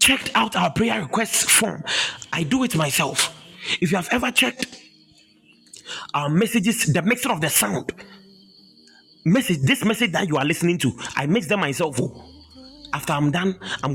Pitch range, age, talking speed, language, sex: 130-185 Hz, 30-49, 165 wpm, English, male